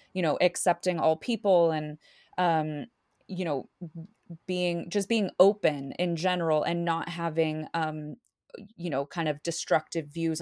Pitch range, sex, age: 165-195 Hz, female, 20-39